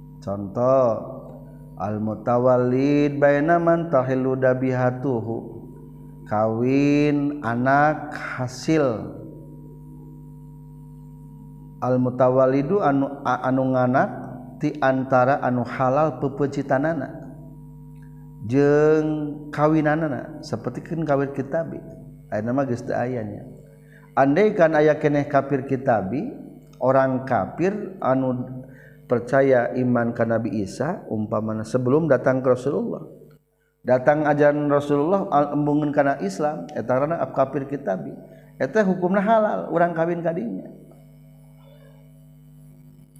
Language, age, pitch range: Indonesian, 50-69, 130-155 Hz